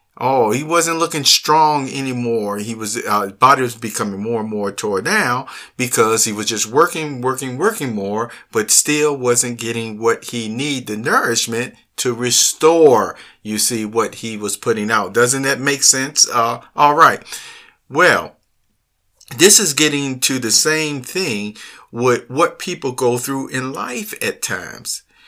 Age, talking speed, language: 50-69, 160 wpm, English